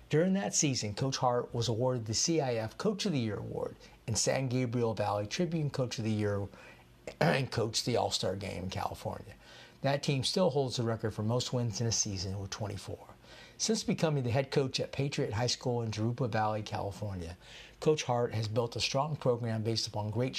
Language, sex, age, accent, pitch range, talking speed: English, male, 50-69, American, 110-140 Hz, 195 wpm